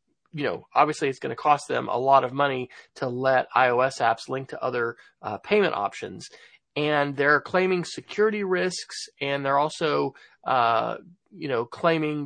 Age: 30-49